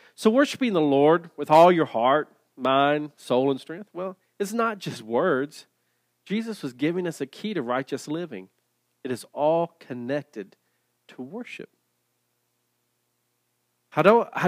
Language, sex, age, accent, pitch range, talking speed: English, male, 40-59, American, 110-170 Hz, 135 wpm